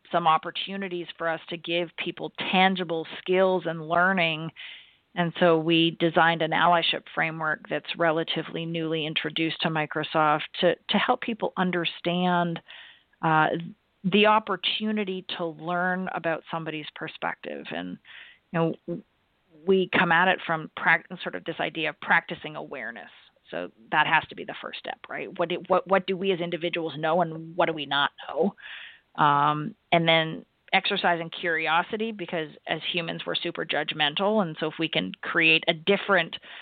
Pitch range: 160-185 Hz